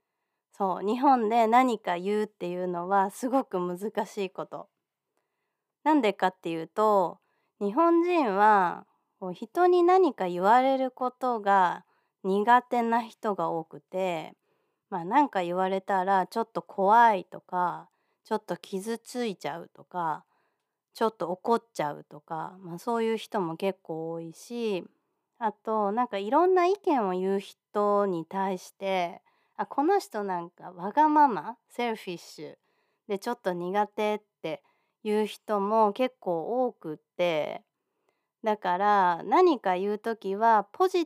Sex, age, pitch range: female, 20-39, 180-245 Hz